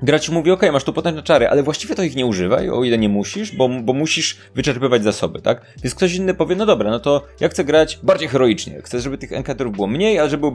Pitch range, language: 110-145 Hz, Polish